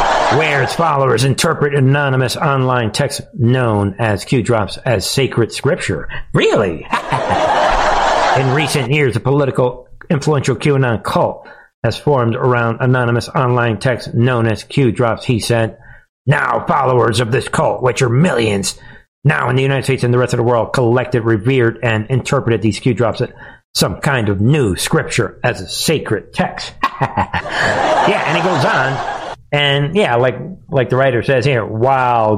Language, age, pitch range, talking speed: English, 50-69, 115-135 Hz, 150 wpm